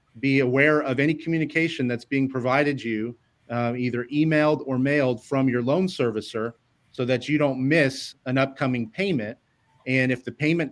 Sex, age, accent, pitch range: male, 30-49, American, 120-145 Hz